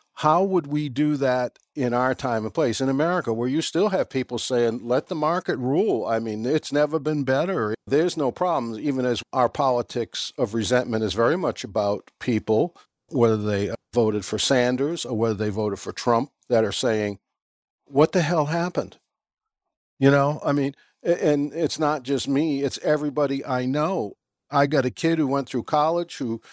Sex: male